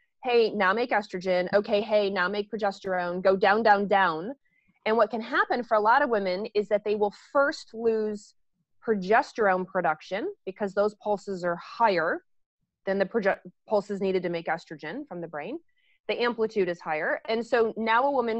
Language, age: English, 30-49